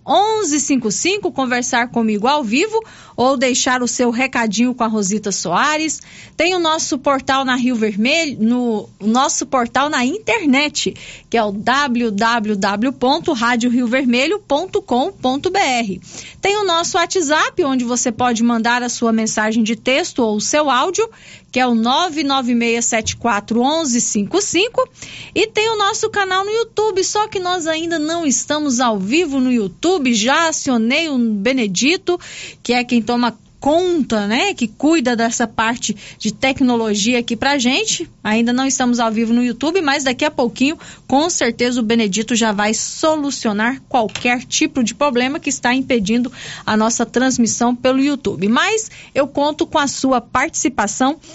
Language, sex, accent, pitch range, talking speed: Portuguese, female, Brazilian, 235-315 Hz, 145 wpm